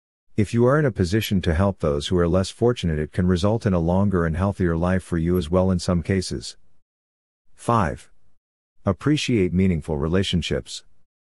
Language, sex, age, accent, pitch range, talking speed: English, male, 50-69, American, 85-100 Hz, 175 wpm